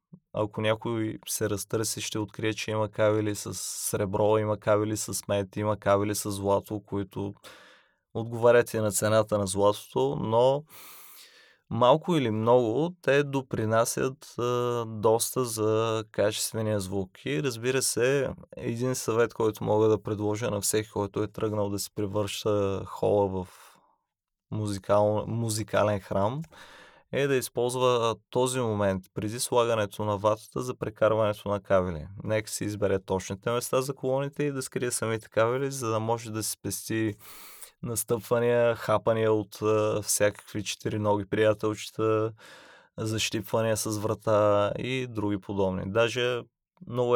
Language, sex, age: Bulgarian, male, 20-39